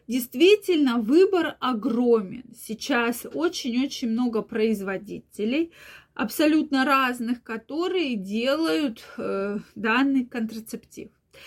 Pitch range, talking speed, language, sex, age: 225-275 Hz, 75 wpm, Russian, female, 20-39